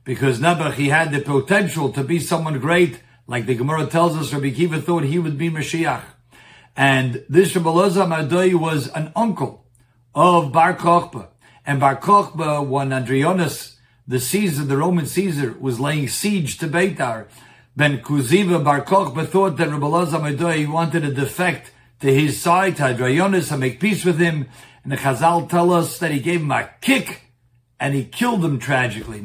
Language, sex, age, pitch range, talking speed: English, male, 60-79, 130-175 Hz, 170 wpm